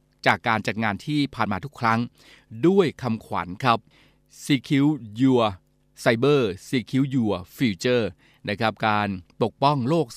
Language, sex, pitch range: Thai, male, 110-140 Hz